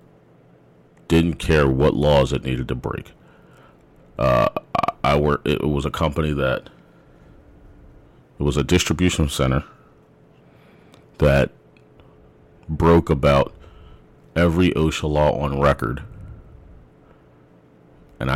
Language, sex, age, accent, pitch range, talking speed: English, male, 40-59, American, 65-75 Hz, 100 wpm